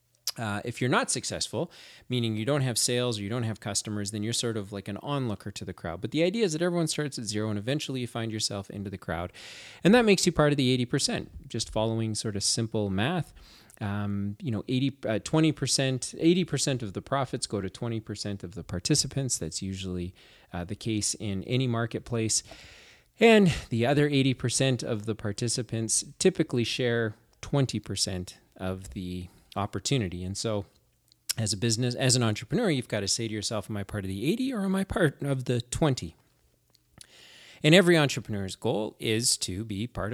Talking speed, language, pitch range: 190 wpm, English, 105-135 Hz